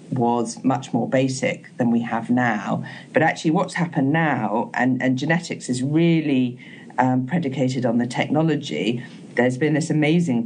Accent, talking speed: British, 155 wpm